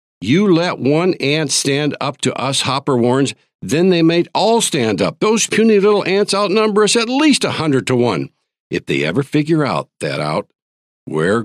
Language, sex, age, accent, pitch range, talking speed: English, male, 60-79, American, 110-160 Hz, 185 wpm